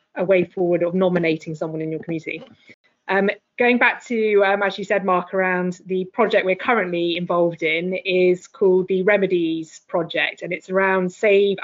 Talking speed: 175 wpm